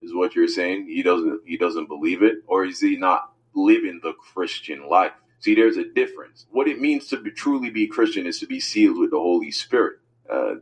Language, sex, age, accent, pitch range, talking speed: English, male, 30-49, American, 275-335 Hz, 220 wpm